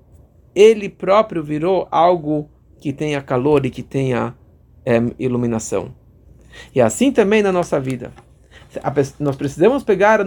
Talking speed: 140 wpm